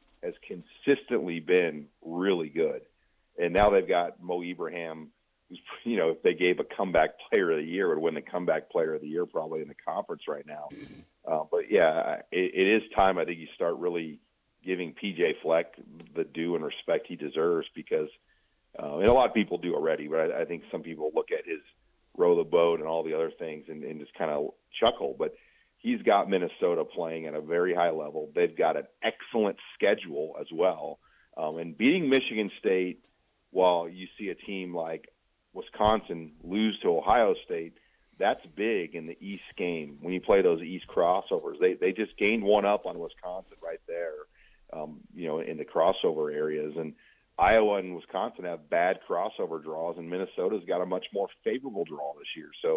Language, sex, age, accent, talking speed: English, male, 40-59, American, 195 wpm